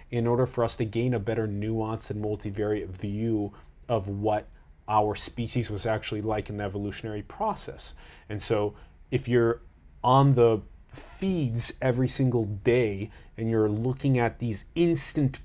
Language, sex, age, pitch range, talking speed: English, male, 30-49, 105-135 Hz, 150 wpm